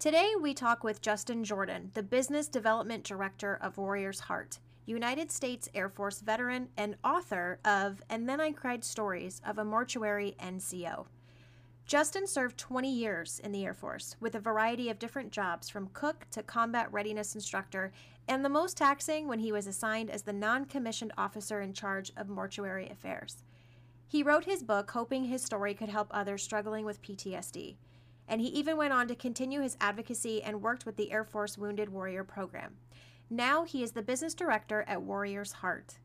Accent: American